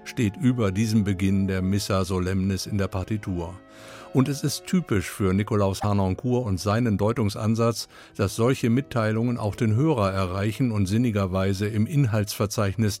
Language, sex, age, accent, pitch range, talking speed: German, male, 50-69, German, 100-120 Hz, 145 wpm